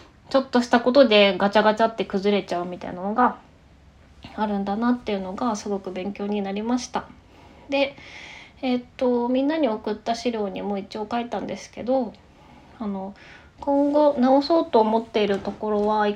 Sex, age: female, 20-39